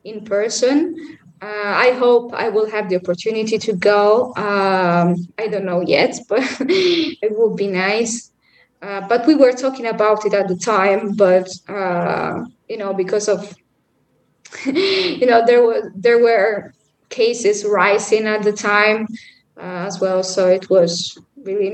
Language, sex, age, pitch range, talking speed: English, female, 20-39, 200-245 Hz, 155 wpm